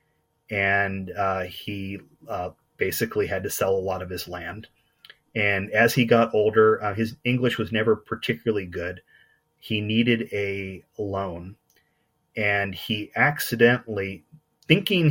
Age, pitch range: 30-49, 95-115 Hz